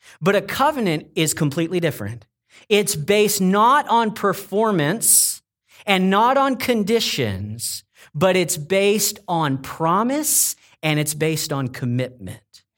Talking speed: 115 wpm